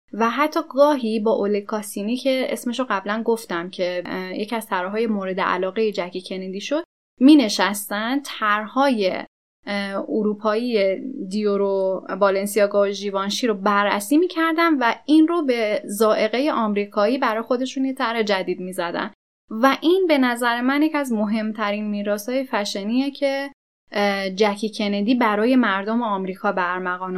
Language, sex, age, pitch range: Persian, female, 10-29, 195-240 Hz